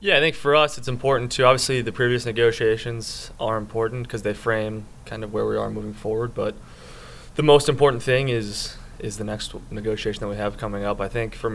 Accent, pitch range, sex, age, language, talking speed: American, 105-115 Hz, male, 20-39, English, 220 wpm